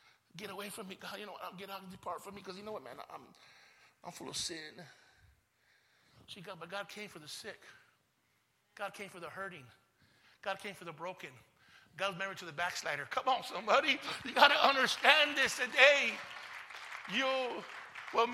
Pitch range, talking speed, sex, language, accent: 150-200 Hz, 195 wpm, male, English, American